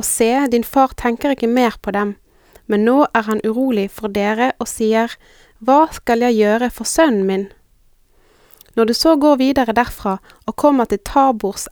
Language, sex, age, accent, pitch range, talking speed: Danish, female, 20-39, Swedish, 215-260 Hz, 175 wpm